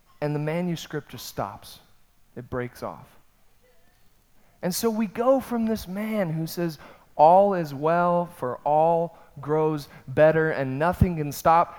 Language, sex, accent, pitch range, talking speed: English, male, American, 140-195 Hz, 145 wpm